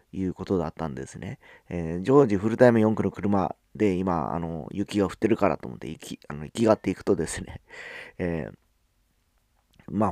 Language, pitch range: Japanese, 85-110 Hz